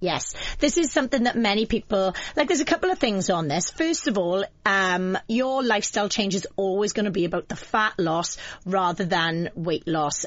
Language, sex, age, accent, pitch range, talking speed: English, female, 30-49, British, 175-215 Hz, 205 wpm